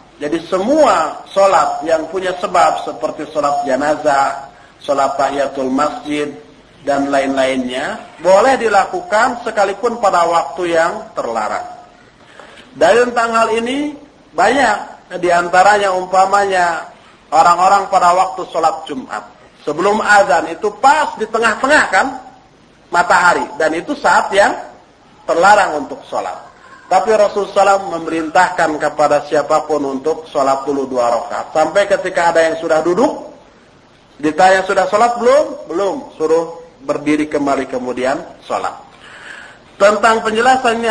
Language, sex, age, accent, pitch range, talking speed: Indonesian, male, 40-59, native, 145-200 Hz, 115 wpm